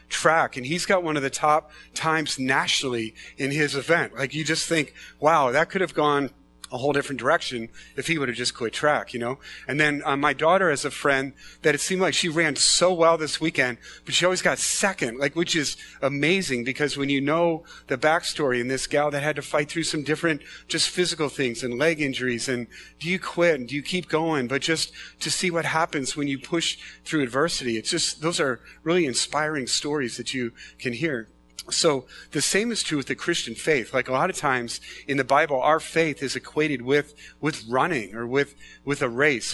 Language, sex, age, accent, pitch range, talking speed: English, male, 30-49, American, 130-160 Hz, 220 wpm